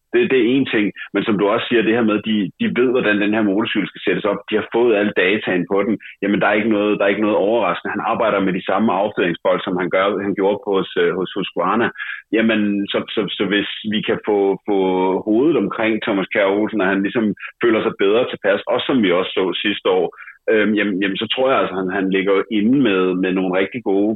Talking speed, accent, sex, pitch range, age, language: 255 wpm, native, male, 95-120 Hz, 30-49, Danish